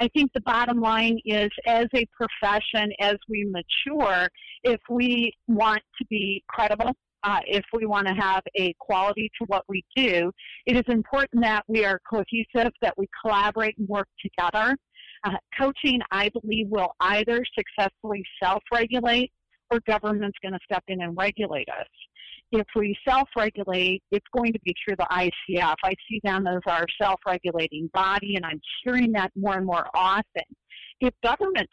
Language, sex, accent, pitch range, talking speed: English, female, American, 190-230 Hz, 165 wpm